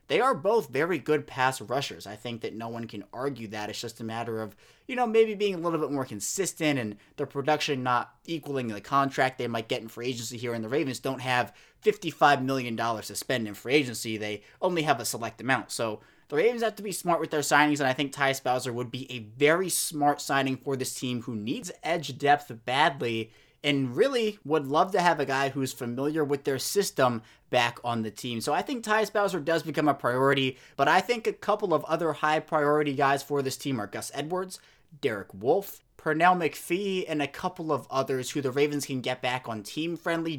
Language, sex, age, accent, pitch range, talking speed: English, male, 20-39, American, 125-160 Hz, 220 wpm